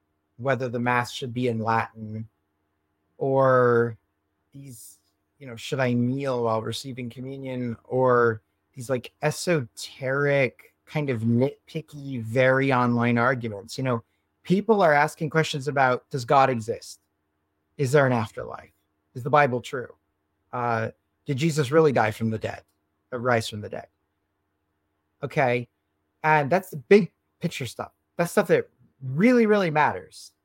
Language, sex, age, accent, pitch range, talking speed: English, male, 30-49, American, 105-150 Hz, 140 wpm